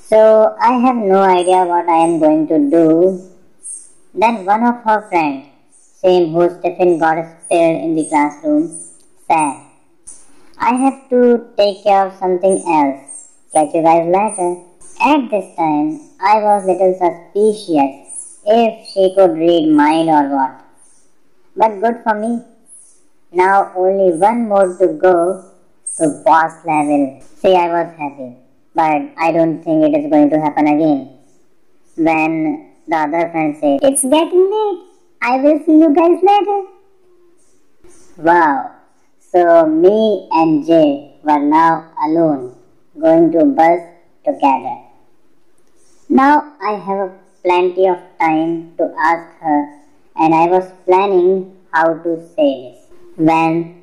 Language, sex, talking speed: Hindi, male, 140 wpm